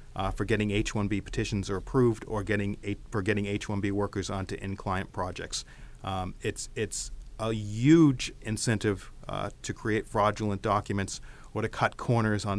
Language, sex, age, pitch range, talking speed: English, male, 40-59, 100-115 Hz, 155 wpm